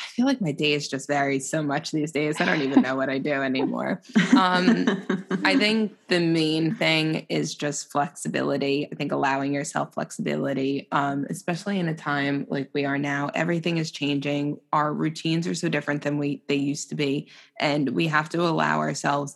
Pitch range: 145-165 Hz